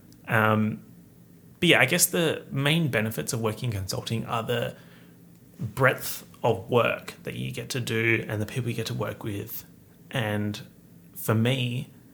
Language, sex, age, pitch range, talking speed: English, male, 30-49, 110-140 Hz, 165 wpm